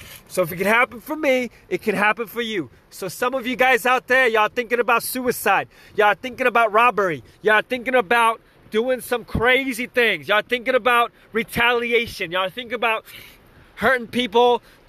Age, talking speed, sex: 20-39, 175 wpm, male